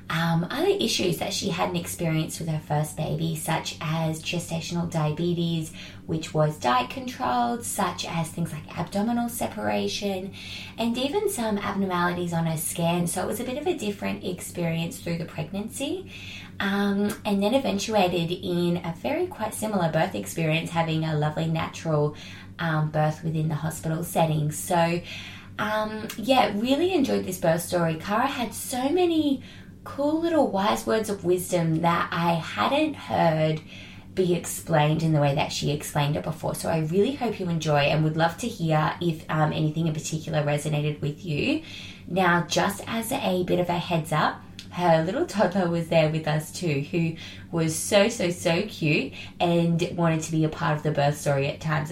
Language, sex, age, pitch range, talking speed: English, female, 20-39, 155-200 Hz, 175 wpm